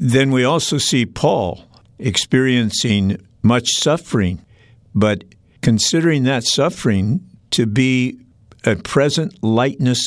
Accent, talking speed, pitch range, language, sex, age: American, 100 wpm, 110-135 Hz, English, male, 50-69